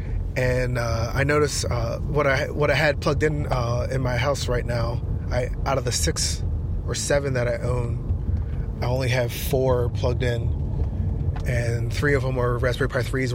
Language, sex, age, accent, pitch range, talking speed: English, male, 30-49, American, 110-130 Hz, 190 wpm